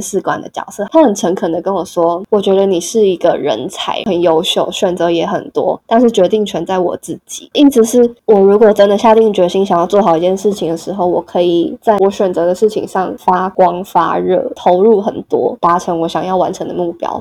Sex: female